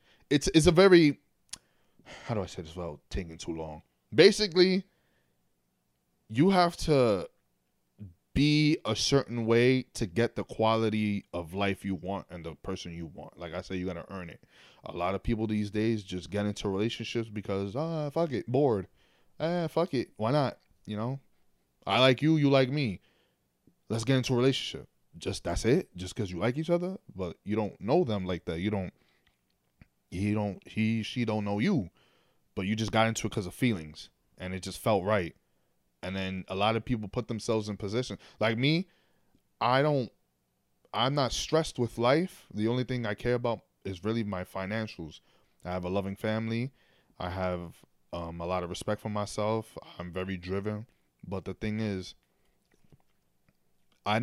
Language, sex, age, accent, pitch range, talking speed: English, male, 20-39, American, 90-120 Hz, 185 wpm